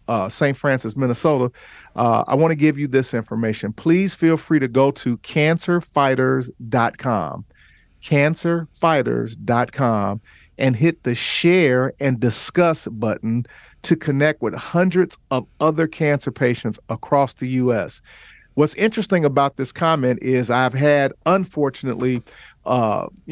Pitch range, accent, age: 125-150 Hz, American, 50-69